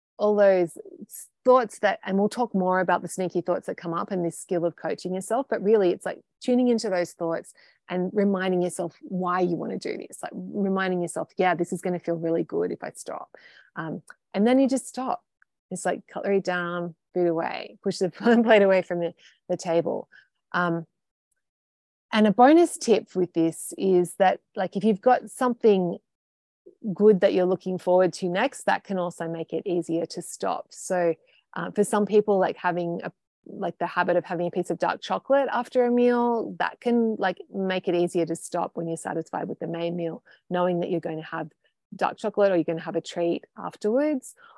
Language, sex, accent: English, female, Australian